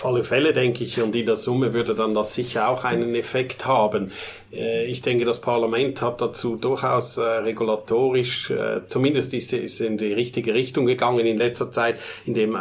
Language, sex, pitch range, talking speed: German, male, 115-135 Hz, 175 wpm